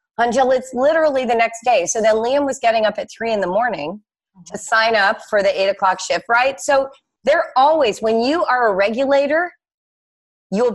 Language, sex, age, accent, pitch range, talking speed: English, female, 40-59, American, 190-255 Hz, 195 wpm